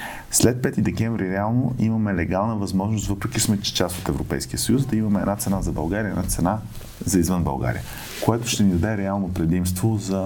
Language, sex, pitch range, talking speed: Bulgarian, male, 85-105 Hz, 180 wpm